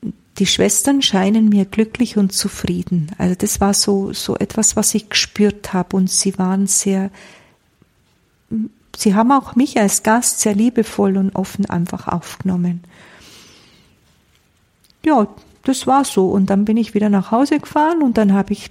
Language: German